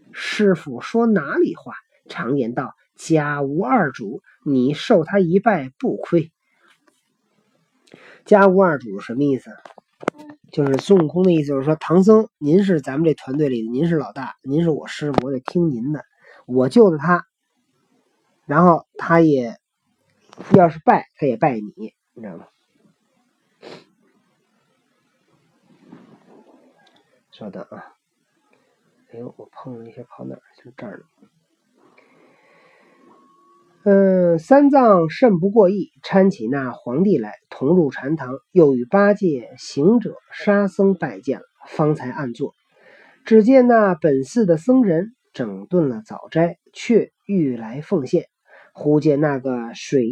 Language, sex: Chinese, male